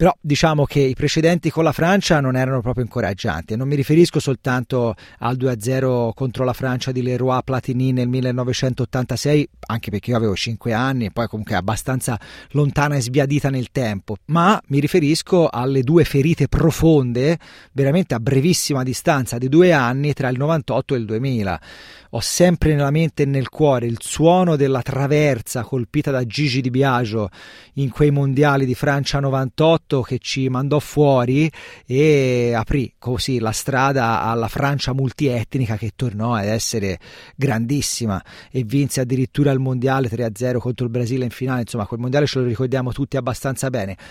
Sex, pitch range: male, 120-145 Hz